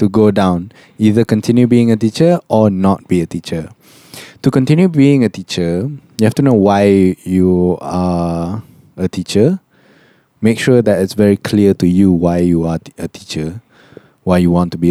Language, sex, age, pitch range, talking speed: English, male, 20-39, 90-105 Hz, 185 wpm